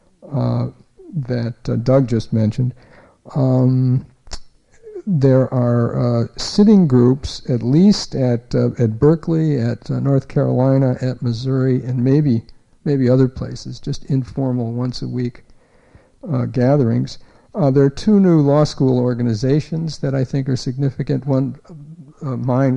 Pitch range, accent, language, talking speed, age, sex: 125-140 Hz, American, English, 130 wpm, 60-79, male